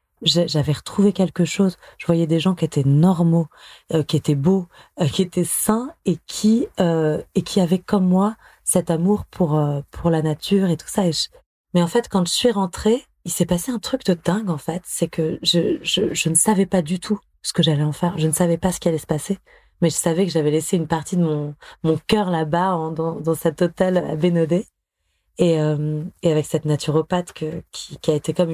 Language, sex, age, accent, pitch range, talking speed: French, female, 20-39, French, 155-185 Hz, 235 wpm